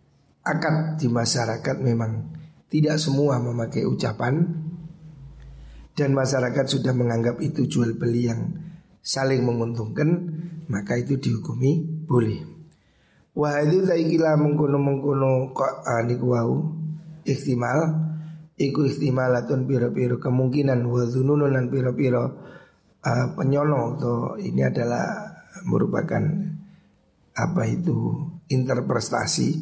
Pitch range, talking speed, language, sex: 130-155 Hz, 95 wpm, Indonesian, male